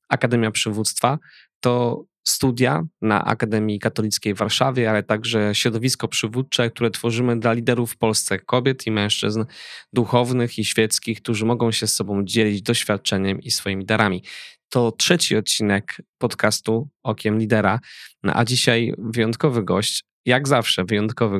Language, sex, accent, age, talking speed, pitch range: Polish, male, native, 20-39, 135 wpm, 105-125 Hz